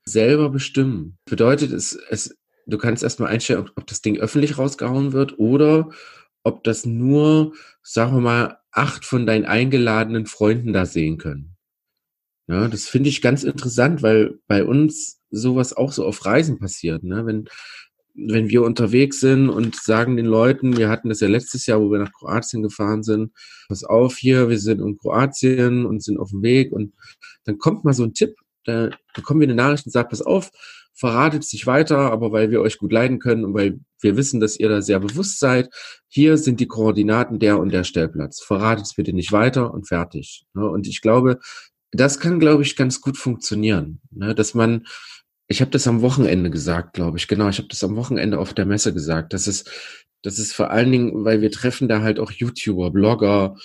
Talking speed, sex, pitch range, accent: 190 wpm, male, 105-130 Hz, German